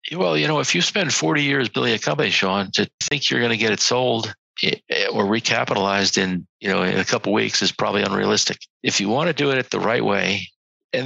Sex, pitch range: male, 105-125 Hz